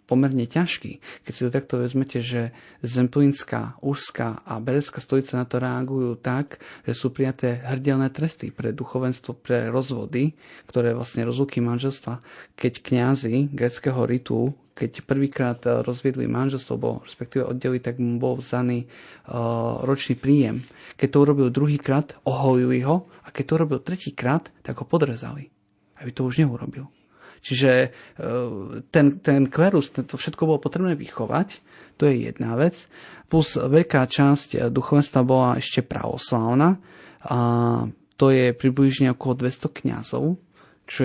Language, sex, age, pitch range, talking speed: Slovak, male, 30-49, 120-145 Hz, 135 wpm